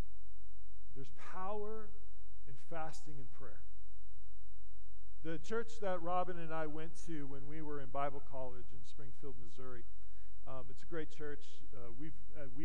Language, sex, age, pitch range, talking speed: English, male, 40-59, 120-165 Hz, 140 wpm